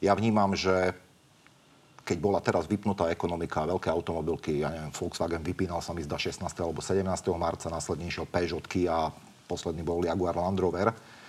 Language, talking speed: Slovak, 160 wpm